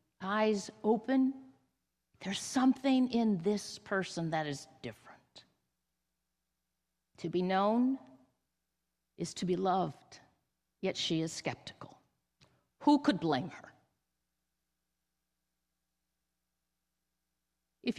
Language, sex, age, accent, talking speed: English, female, 50-69, American, 85 wpm